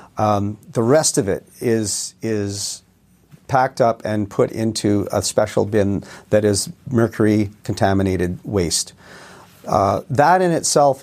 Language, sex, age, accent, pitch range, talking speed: English, male, 40-59, American, 100-120 Hz, 130 wpm